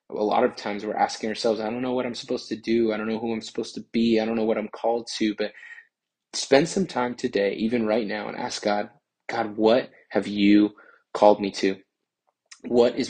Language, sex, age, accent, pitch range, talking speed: English, male, 20-39, American, 105-120 Hz, 230 wpm